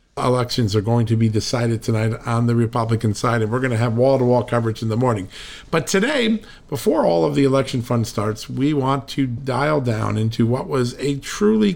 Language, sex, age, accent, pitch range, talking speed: English, male, 50-69, American, 115-140 Hz, 205 wpm